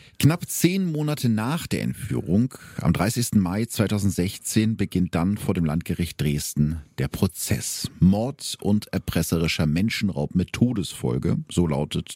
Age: 50-69